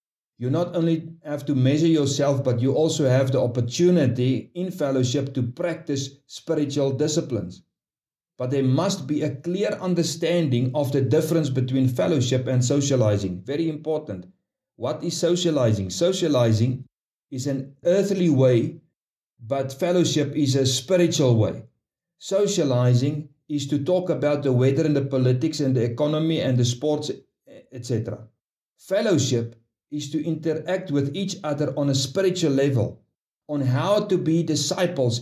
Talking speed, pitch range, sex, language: 140 wpm, 130-165 Hz, male, English